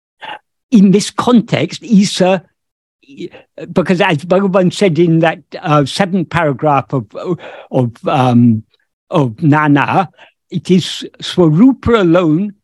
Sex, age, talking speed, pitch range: male, 60-79, 105 wpm, 145-190 Hz